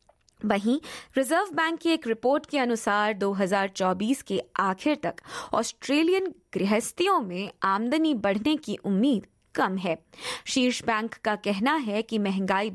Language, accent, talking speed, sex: Hindi, native, 130 wpm, female